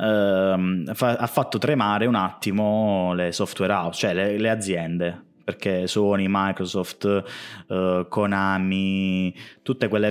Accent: native